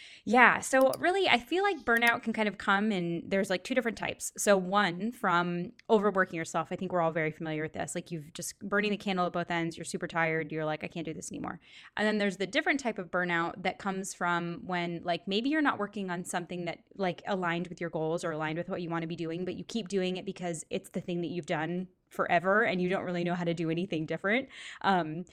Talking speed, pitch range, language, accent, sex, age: 255 wpm, 165-200 Hz, English, American, female, 10-29